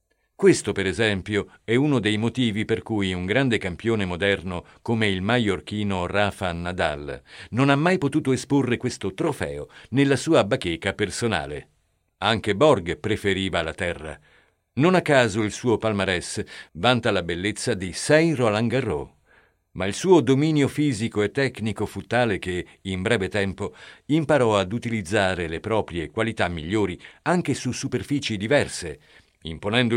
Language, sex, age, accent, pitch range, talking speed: Italian, male, 50-69, native, 95-130 Hz, 140 wpm